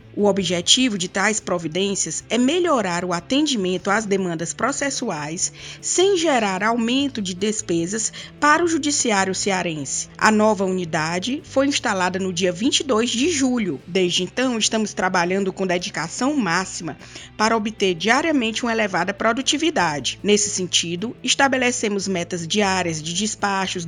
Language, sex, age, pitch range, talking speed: Portuguese, female, 20-39, 185-255 Hz, 130 wpm